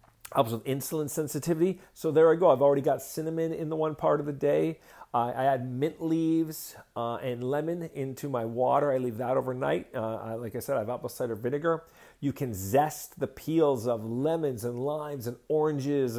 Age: 50-69